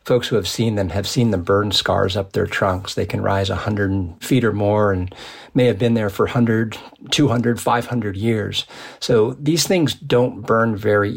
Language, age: English, 40-59